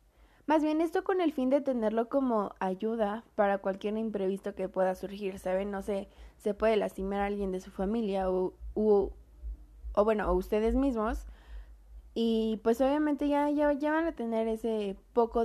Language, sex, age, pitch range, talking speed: Spanish, female, 20-39, 195-255 Hz, 175 wpm